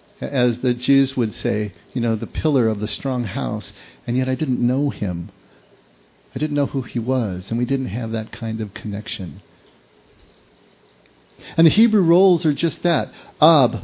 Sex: male